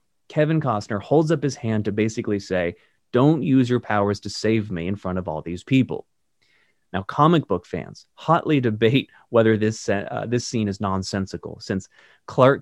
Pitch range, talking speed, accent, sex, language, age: 110-155 Hz, 175 wpm, American, male, English, 30-49